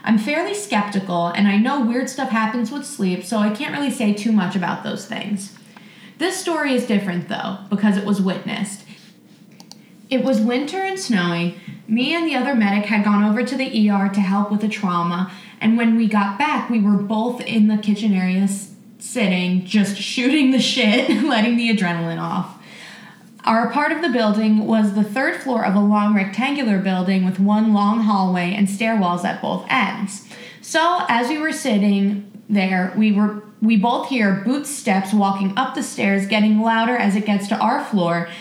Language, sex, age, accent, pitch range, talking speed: English, female, 20-39, American, 200-240 Hz, 185 wpm